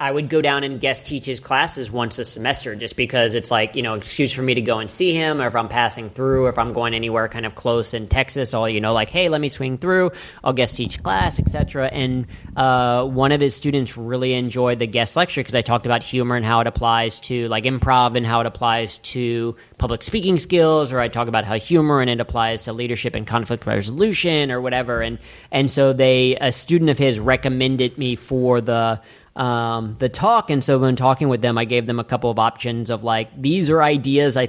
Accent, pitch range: American, 115-135 Hz